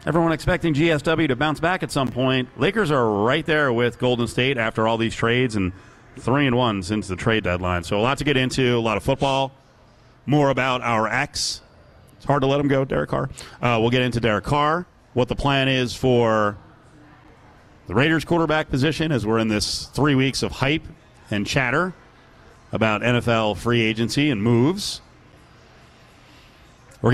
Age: 40-59